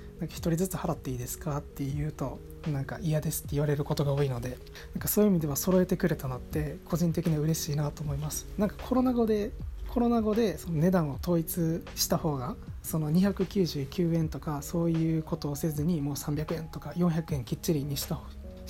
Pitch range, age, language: 140-170 Hz, 20-39, Japanese